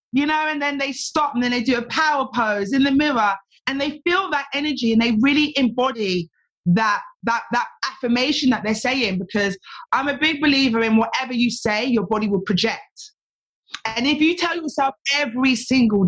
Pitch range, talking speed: 230-330 Hz, 195 wpm